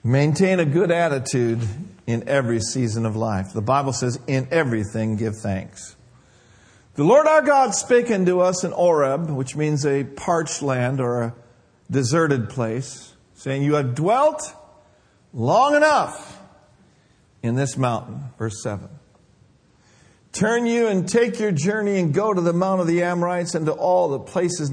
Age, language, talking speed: 50-69, English, 155 wpm